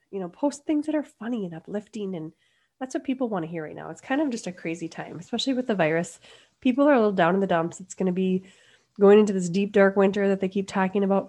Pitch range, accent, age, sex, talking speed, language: 180-250 Hz, American, 30-49, female, 275 wpm, English